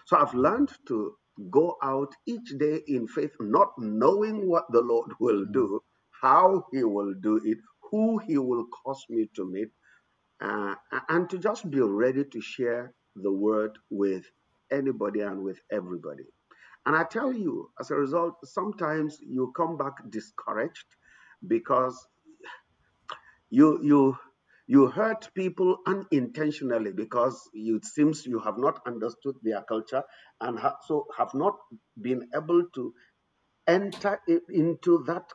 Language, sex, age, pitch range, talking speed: English, male, 50-69, 115-170 Hz, 140 wpm